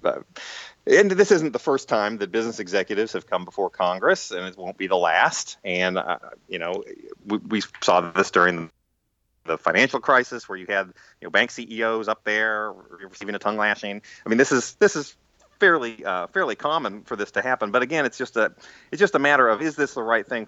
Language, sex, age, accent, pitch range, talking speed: English, male, 30-49, American, 95-120 Hz, 215 wpm